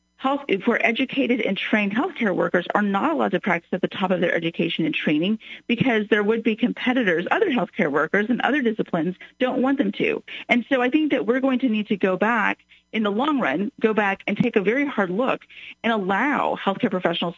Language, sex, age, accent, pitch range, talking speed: English, female, 40-59, American, 185-245 Hz, 220 wpm